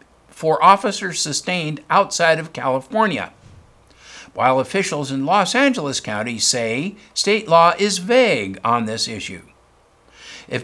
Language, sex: English, male